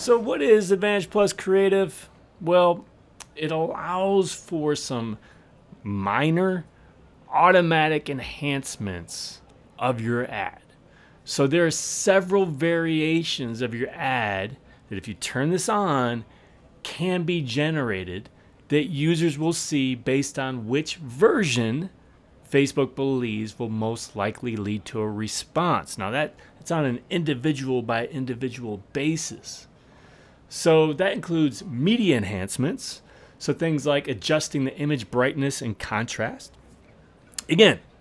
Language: English